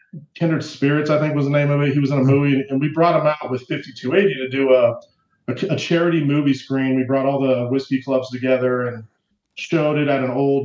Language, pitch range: English, 125-150 Hz